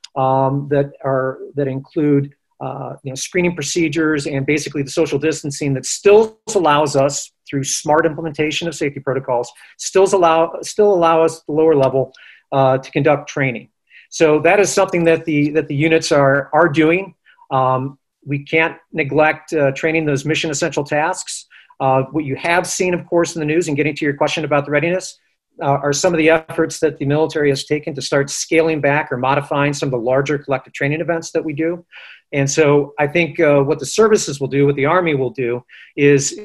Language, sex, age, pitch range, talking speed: English, male, 40-59, 140-160 Hz, 200 wpm